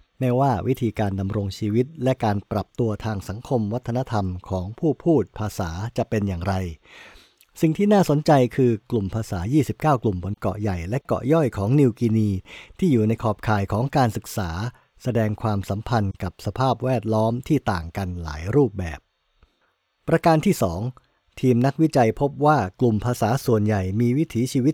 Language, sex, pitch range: English, male, 105-130 Hz